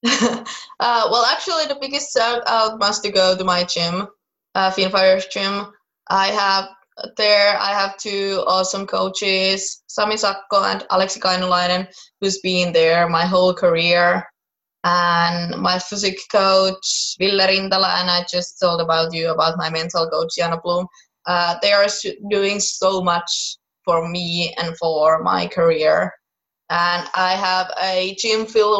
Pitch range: 180-220 Hz